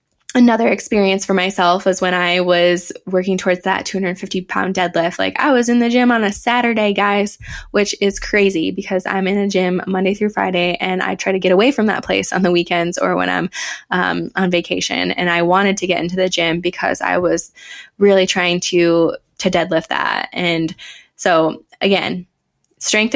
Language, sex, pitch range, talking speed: English, female, 175-200 Hz, 200 wpm